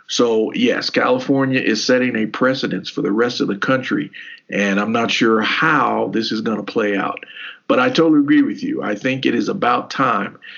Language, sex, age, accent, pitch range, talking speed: English, male, 50-69, American, 105-150 Hz, 205 wpm